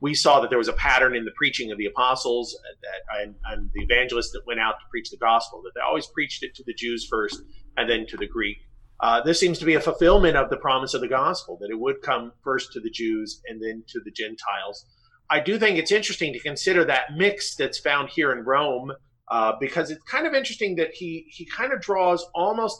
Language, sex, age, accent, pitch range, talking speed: English, male, 40-59, American, 135-200 Hz, 240 wpm